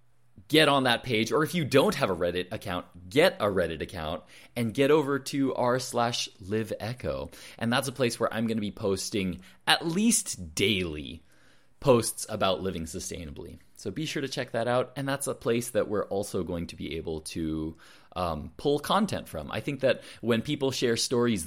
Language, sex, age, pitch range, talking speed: English, male, 20-39, 95-130 Hz, 200 wpm